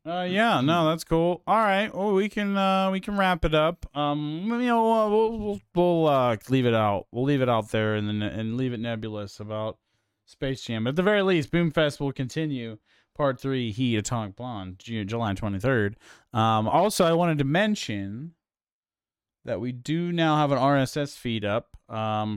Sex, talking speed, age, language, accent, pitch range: male, 200 wpm, 30-49, English, American, 110-145 Hz